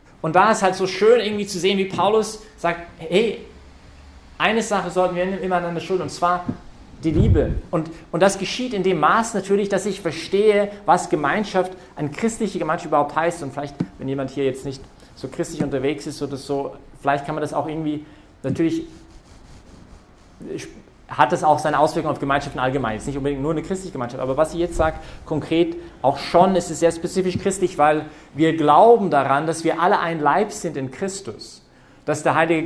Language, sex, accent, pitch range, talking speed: English, male, German, 145-185 Hz, 195 wpm